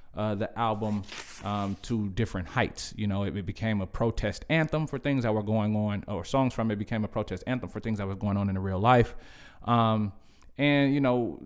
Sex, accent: male, American